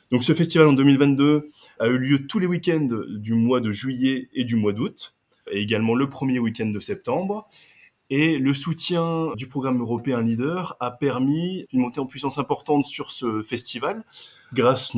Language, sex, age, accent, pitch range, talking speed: French, male, 20-39, French, 105-135 Hz, 175 wpm